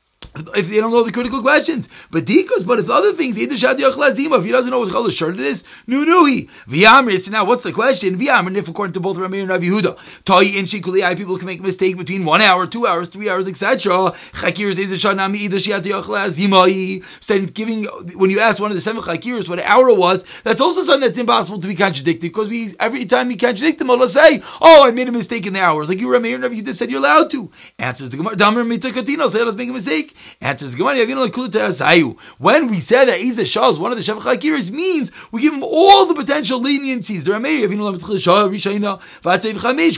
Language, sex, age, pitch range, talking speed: English, male, 30-49, 190-250 Hz, 185 wpm